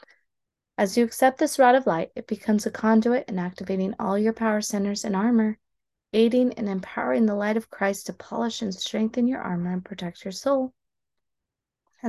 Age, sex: 20-39, female